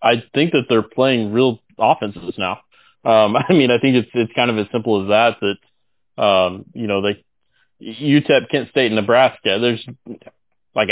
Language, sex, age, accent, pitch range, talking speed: English, male, 30-49, American, 105-125 Hz, 175 wpm